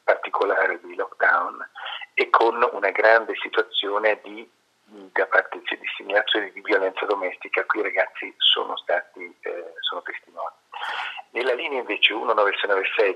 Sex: male